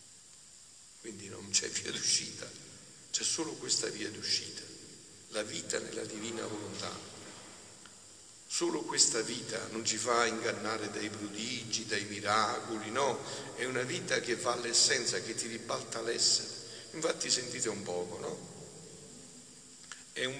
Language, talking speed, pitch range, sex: Italian, 130 wpm, 105-115 Hz, male